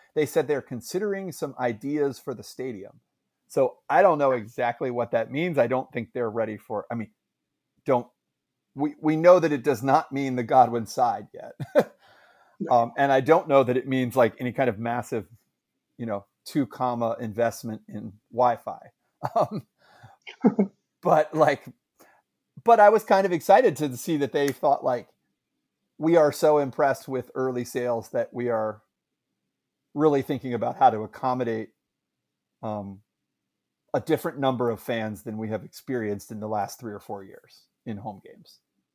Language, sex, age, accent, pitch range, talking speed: English, male, 40-59, American, 115-150 Hz, 170 wpm